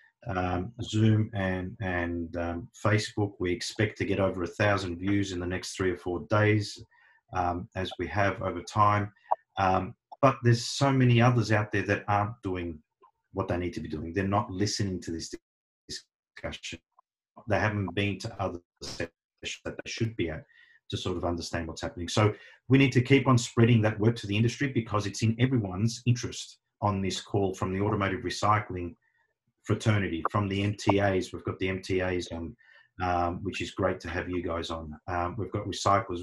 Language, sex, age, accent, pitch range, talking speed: English, male, 40-59, Australian, 90-115 Hz, 185 wpm